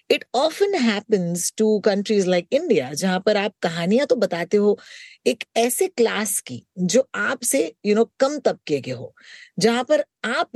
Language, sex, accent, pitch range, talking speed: Hindi, female, native, 175-240 Hz, 130 wpm